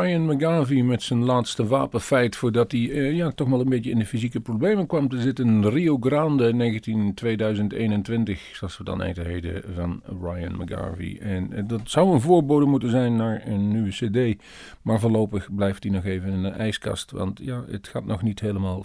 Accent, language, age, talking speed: Dutch, Dutch, 40-59, 190 wpm